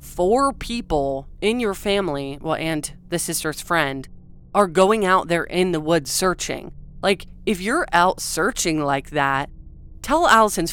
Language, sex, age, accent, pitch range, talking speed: English, female, 20-39, American, 150-190 Hz, 150 wpm